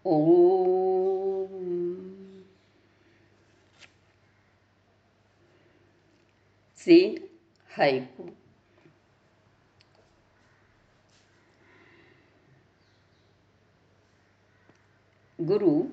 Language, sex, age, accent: Hindi, female, 60-79, native